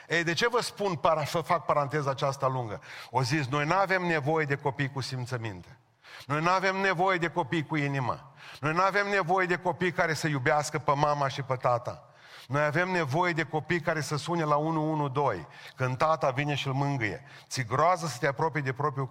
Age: 40-59